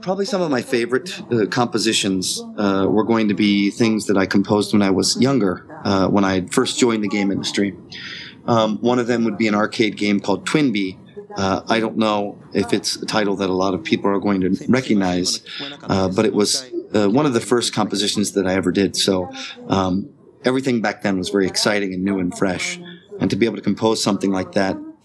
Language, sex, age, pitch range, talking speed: English, male, 30-49, 95-120 Hz, 220 wpm